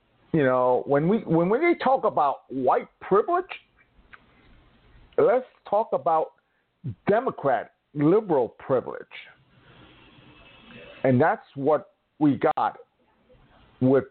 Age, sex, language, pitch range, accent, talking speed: 50-69, male, English, 140-210 Hz, American, 95 wpm